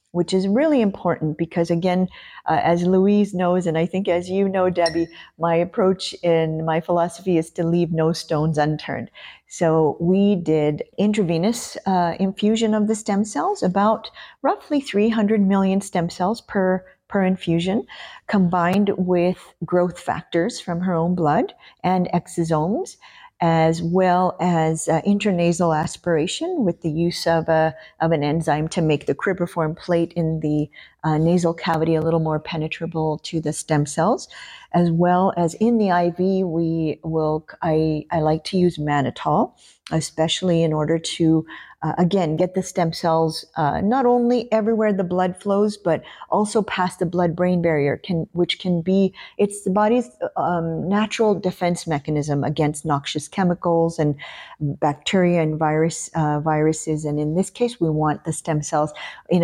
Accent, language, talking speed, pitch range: American, English, 155 wpm, 160-195 Hz